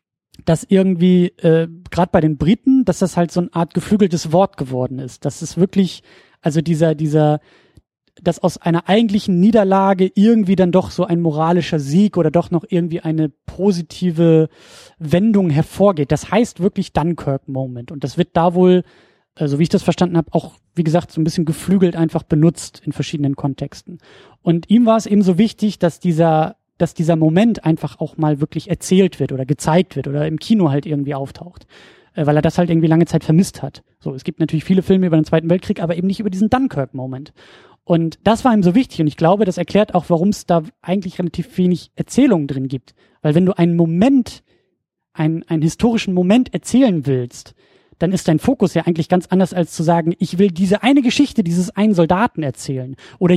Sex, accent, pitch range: male, German, 155-195 Hz